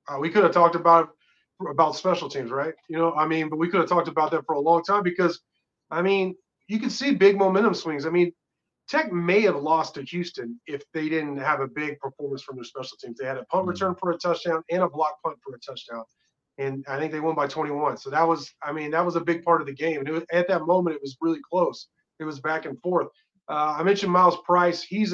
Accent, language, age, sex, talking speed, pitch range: American, English, 30-49, male, 260 wpm, 145-180 Hz